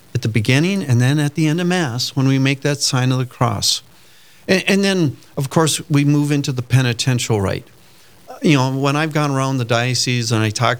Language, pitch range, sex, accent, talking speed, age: English, 115-155 Hz, male, American, 220 wpm, 50-69